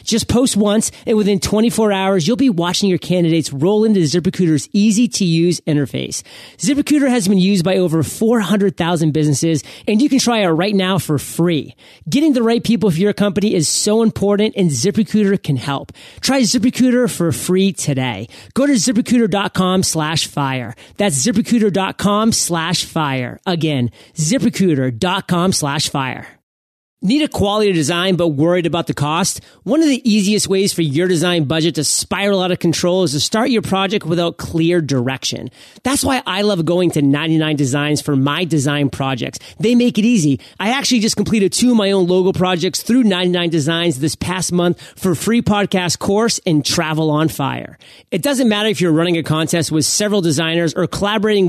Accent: American